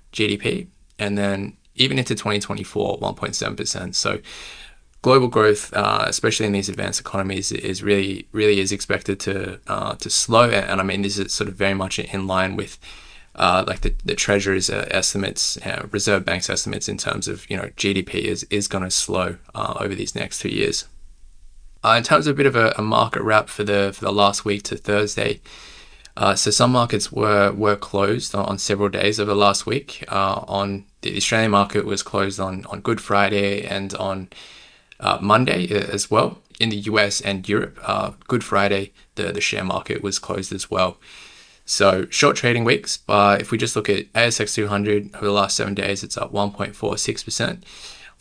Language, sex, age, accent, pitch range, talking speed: English, male, 20-39, Australian, 100-105 Hz, 185 wpm